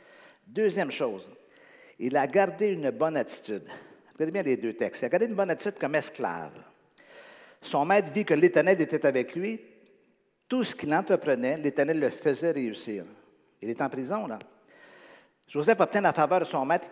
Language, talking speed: French, 175 wpm